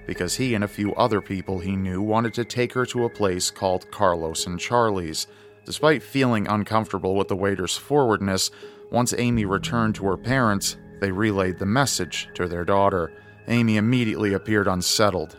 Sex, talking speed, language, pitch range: male, 170 wpm, English, 95-115 Hz